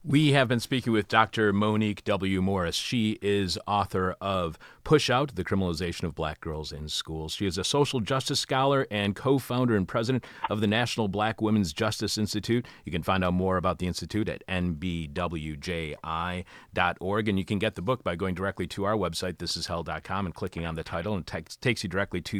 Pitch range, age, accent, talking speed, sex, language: 85-110 Hz, 40-59, American, 195 wpm, male, English